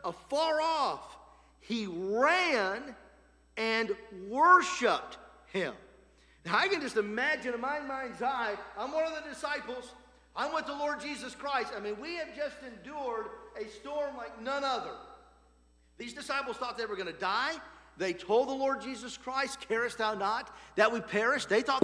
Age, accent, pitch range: 50-69, American, 235-315 Hz